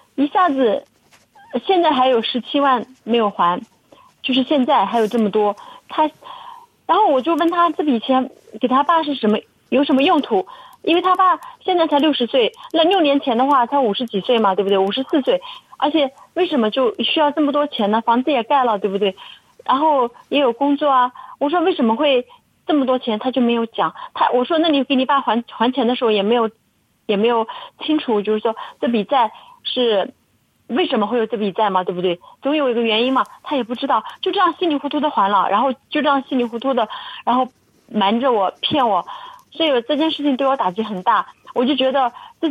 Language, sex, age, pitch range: Chinese, female, 30-49, 235-330 Hz